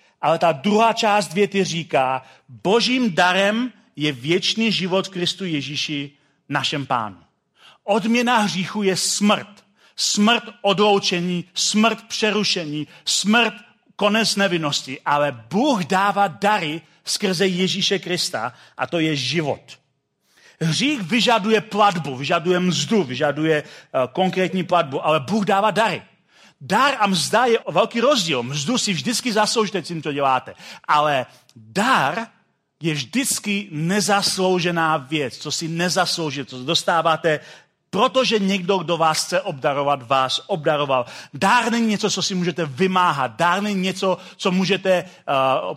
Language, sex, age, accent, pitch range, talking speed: Czech, male, 40-59, native, 160-210 Hz, 125 wpm